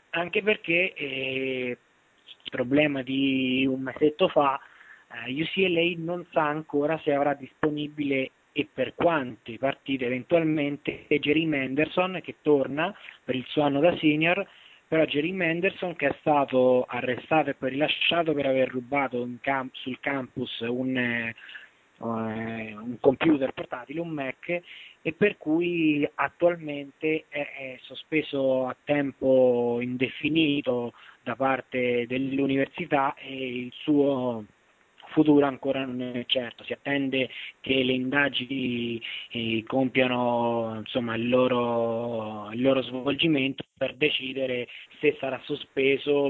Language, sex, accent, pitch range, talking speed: Italian, male, native, 125-150 Hz, 120 wpm